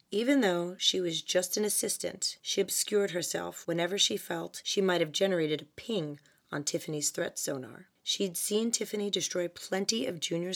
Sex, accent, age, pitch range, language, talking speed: female, American, 30-49, 160-210 Hz, English, 170 wpm